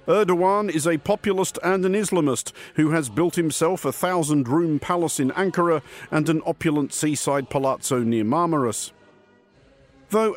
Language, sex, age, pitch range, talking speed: English, male, 50-69, 135-180 Hz, 140 wpm